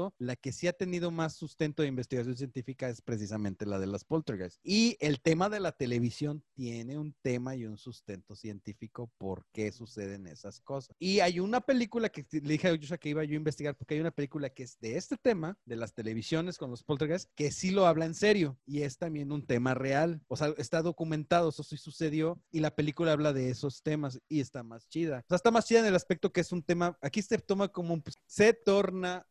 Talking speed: 230 wpm